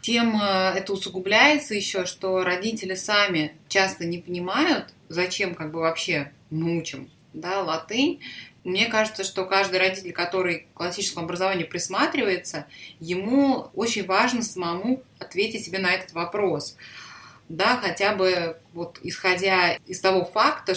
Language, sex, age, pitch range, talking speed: Russian, female, 20-39, 165-200 Hz, 125 wpm